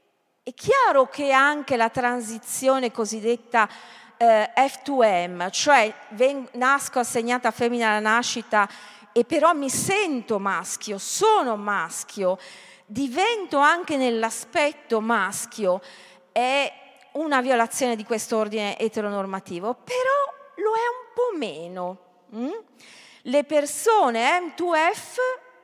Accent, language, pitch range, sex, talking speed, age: native, Italian, 210-295 Hz, female, 110 wpm, 40-59